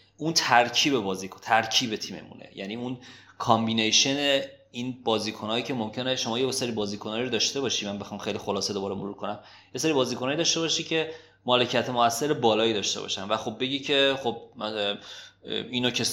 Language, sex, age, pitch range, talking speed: Persian, male, 30-49, 100-130 Hz, 165 wpm